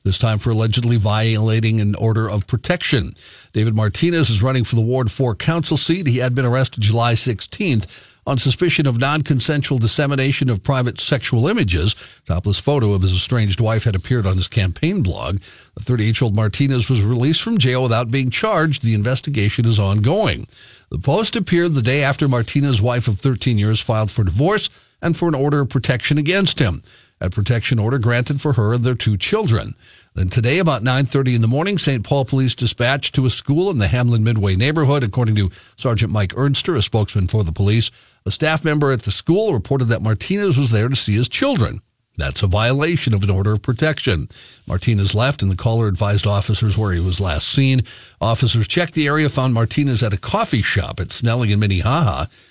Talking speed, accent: 195 wpm, American